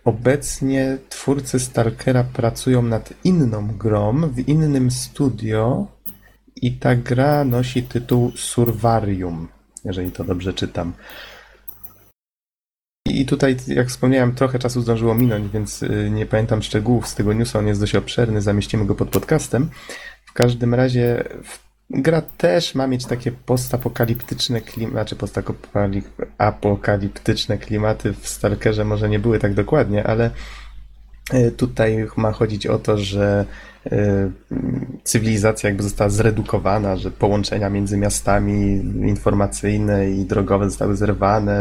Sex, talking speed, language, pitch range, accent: male, 120 wpm, Polish, 100-125 Hz, native